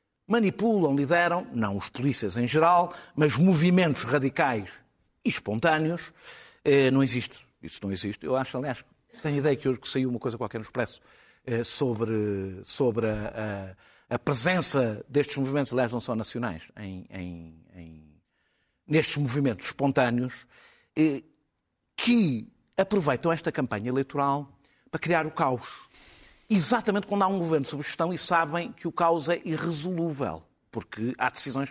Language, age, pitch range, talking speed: Portuguese, 50-69, 120-180 Hz, 140 wpm